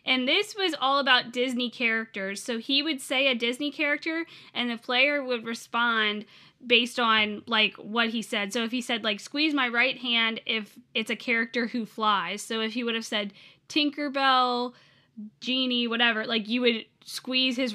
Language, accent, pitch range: English, American, 225-285 Hz